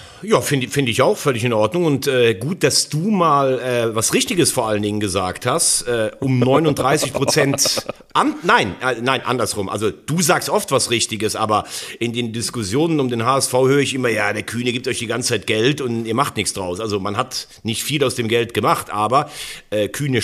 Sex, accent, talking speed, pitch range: male, German, 210 wpm, 110-135 Hz